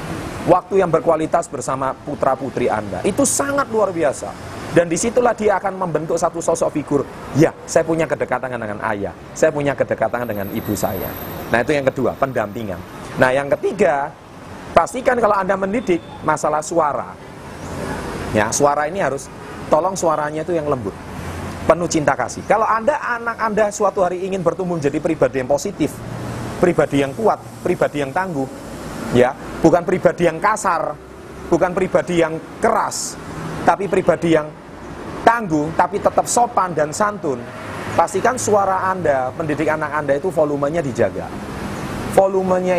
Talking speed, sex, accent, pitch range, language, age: 145 wpm, male, native, 140-190 Hz, Indonesian, 30-49